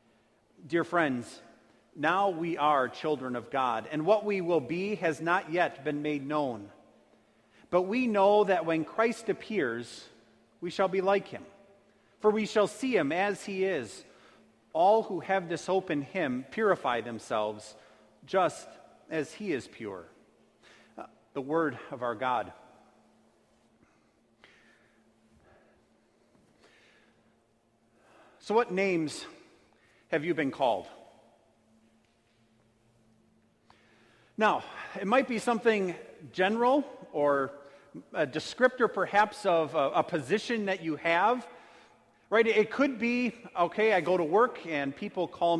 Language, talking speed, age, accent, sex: English, 125 wpm, 40-59, American, male